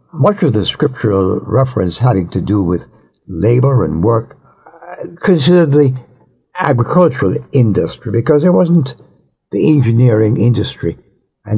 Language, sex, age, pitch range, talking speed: English, male, 60-79, 100-150 Hz, 125 wpm